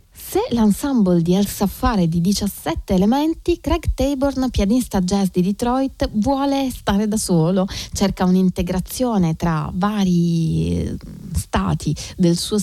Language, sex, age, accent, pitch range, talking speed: Italian, female, 30-49, native, 170-210 Hz, 120 wpm